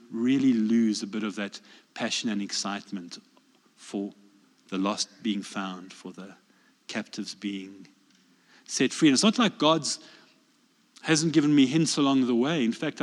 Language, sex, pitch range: English, male, 120-190 Hz